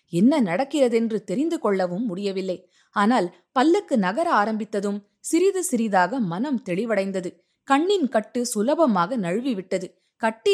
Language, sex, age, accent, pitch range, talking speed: Tamil, female, 20-39, native, 185-260 Hz, 115 wpm